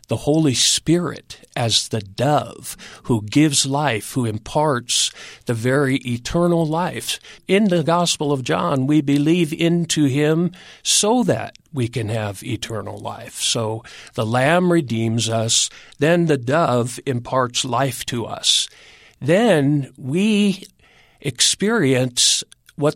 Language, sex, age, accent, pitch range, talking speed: English, male, 50-69, American, 120-155 Hz, 125 wpm